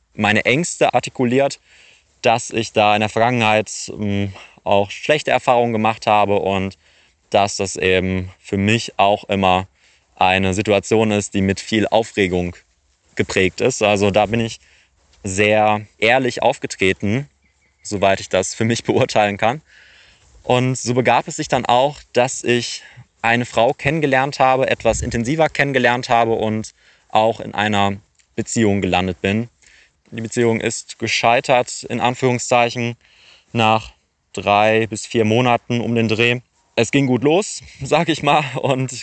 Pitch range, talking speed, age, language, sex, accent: 100-120 Hz, 140 wpm, 20-39, German, male, German